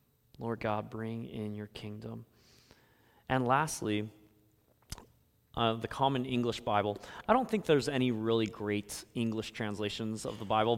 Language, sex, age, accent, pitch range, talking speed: English, male, 20-39, American, 110-140 Hz, 140 wpm